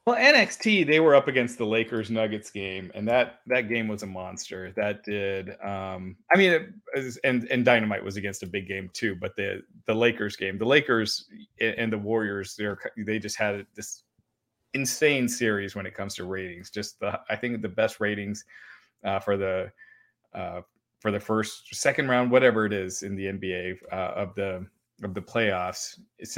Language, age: English, 30-49